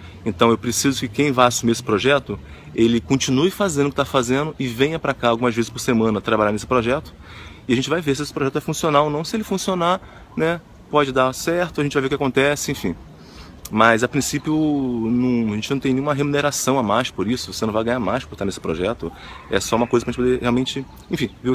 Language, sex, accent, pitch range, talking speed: Portuguese, male, Brazilian, 95-130 Hz, 250 wpm